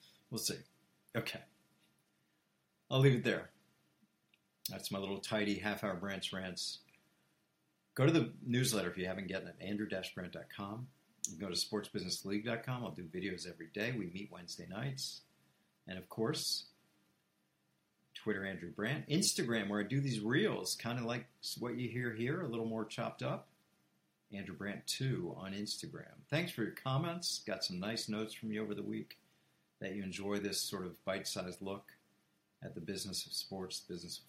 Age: 50-69